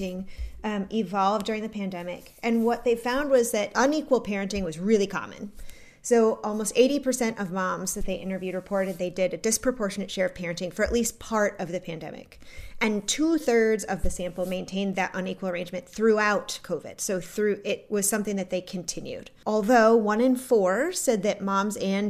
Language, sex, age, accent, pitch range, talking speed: English, female, 30-49, American, 180-225 Hz, 180 wpm